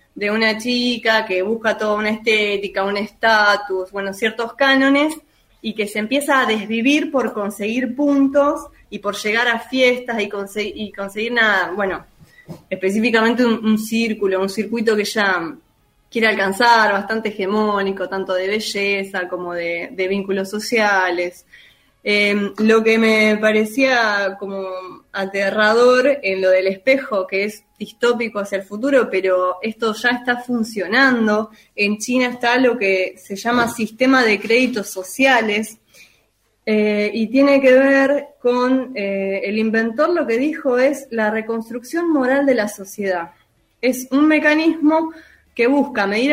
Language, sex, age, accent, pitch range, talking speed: Spanish, female, 20-39, Argentinian, 200-255 Hz, 140 wpm